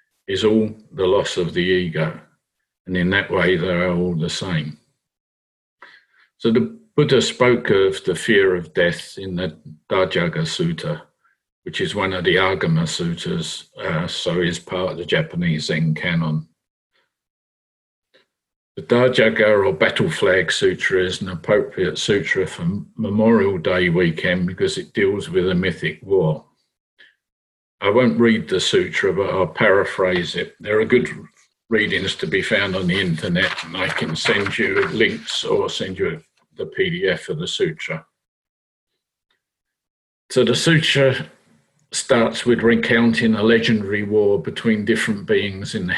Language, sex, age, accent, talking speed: English, male, 50-69, British, 145 wpm